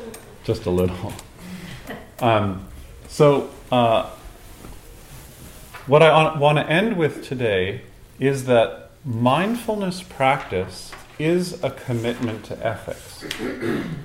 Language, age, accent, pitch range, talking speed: English, 40-59, American, 105-150 Hz, 95 wpm